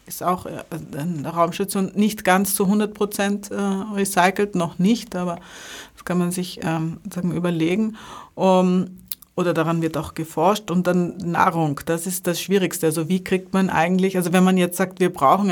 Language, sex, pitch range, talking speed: German, female, 160-185 Hz, 180 wpm